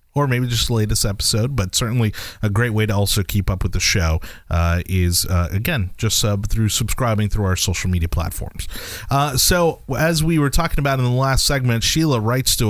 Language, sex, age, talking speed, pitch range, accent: English, male, 30-49, 215 wpm, 95-120 Hz, American